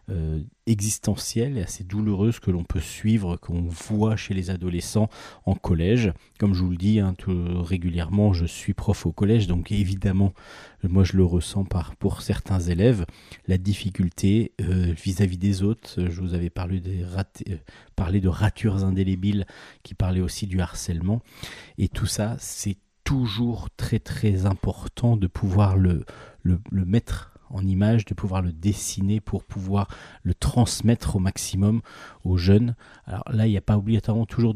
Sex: male